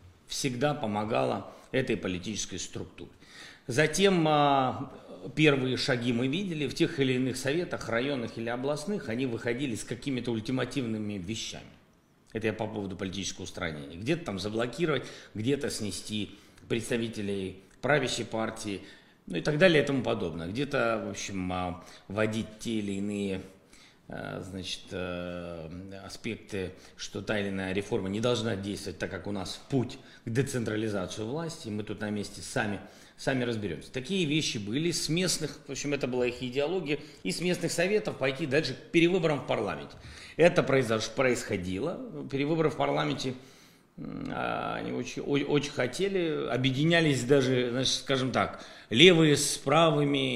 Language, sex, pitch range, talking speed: Russian, male, 100-140 Hz, 135 wpm